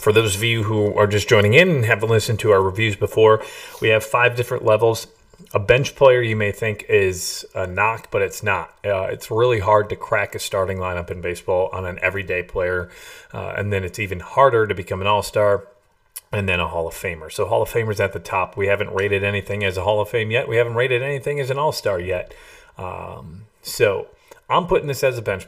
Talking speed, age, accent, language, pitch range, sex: 230 wpm, 30-49, American, English, 100-165 Hz, male